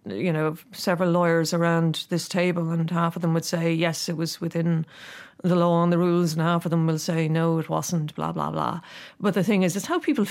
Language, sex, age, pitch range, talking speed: English, female, 40-59, 165-195 Hz, 240 wpm